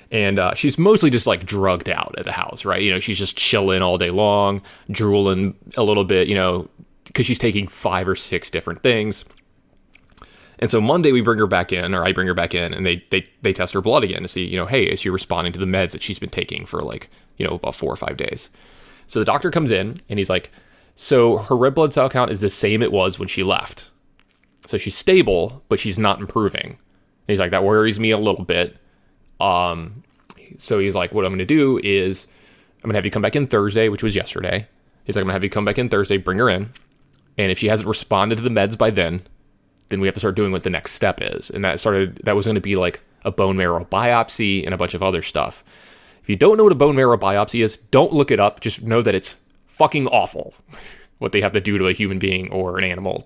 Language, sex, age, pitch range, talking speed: English, male, 20-39, 95-110 Hz, 255 wpm